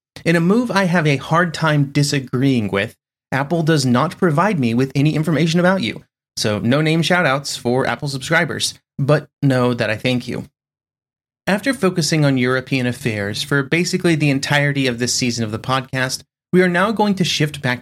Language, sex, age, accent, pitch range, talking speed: English, male, 30-49, American, 125-160 Hz, 190 wpm